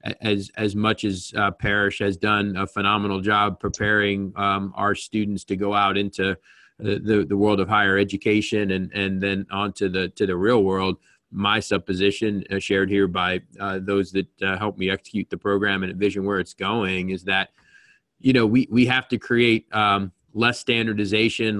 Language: English